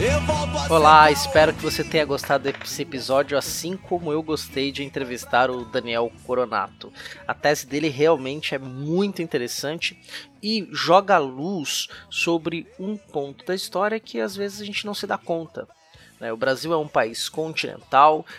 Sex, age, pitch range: male, 20-39, 135-175 Hz